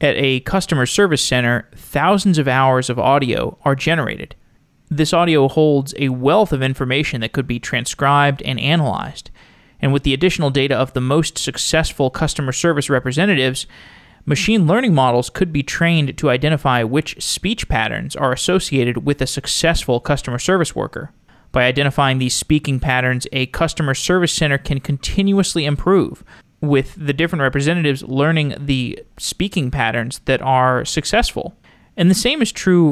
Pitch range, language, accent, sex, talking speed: 130-165 Hz, English, American, male, 155 wpm